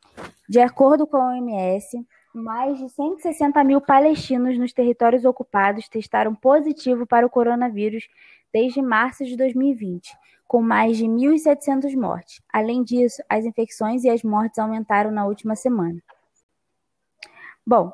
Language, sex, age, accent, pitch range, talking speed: Portuguese, female, 20-39, Brazilian, 220-260 Hz, 130 wpm